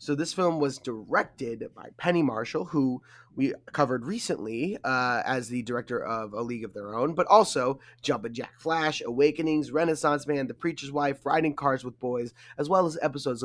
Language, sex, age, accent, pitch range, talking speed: English, male, 20-39, American, 125-150 Hz, 185 wpm